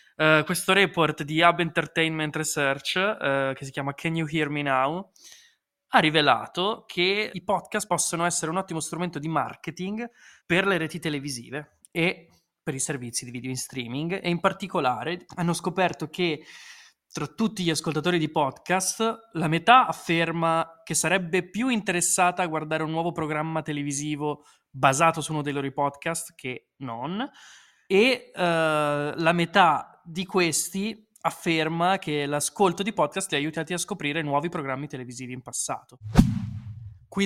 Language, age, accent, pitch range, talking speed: Italian, 20-39, native, 145-175 Hz, 150 wpm